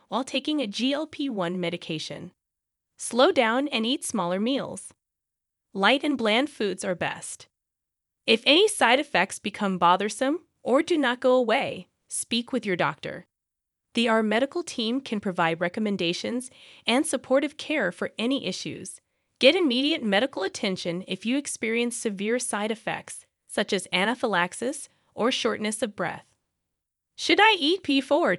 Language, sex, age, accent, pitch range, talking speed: English, female, 20-39, American, 195-265 Hz, 140 wpm